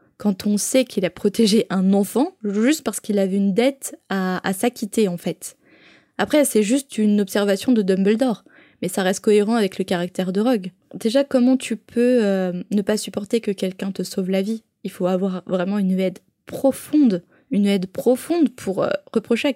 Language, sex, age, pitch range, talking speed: French, female, 20-39, 200-260 Hz, 195 wpm